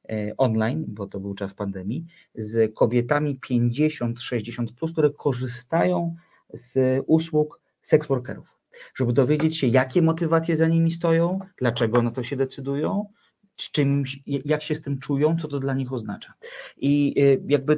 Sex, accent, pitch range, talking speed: male, native, 115-155 Hz, 145 wpm